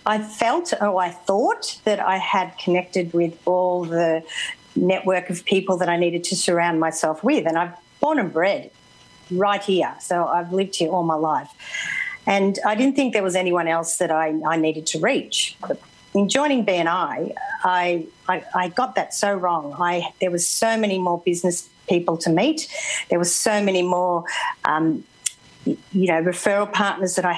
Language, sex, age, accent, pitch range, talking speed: English, female, 50-69, Australian, 165-200 Hz, 180 wpm